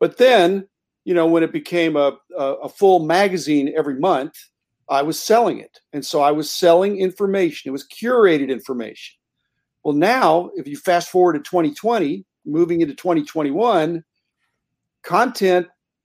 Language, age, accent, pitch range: English, 50-69, American, 155-225 Hz